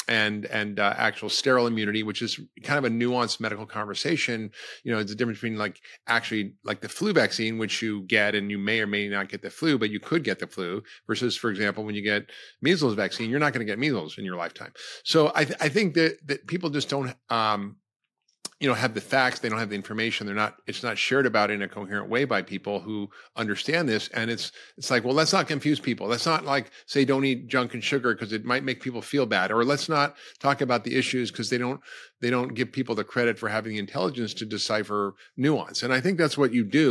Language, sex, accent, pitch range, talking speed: English, male, American, 105-135 Hz, 245 wpm